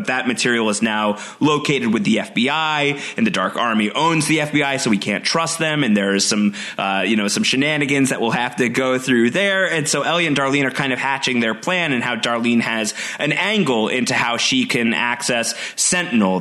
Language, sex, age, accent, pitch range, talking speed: English, male, 30-49, American, 115-170 Hz, 225 wpm